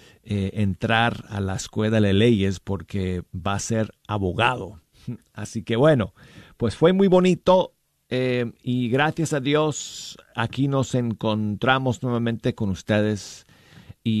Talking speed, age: 130 wpm, 50-69